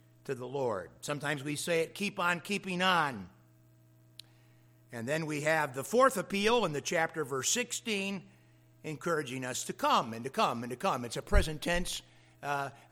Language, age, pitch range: English, 60-79, 125-185 Hz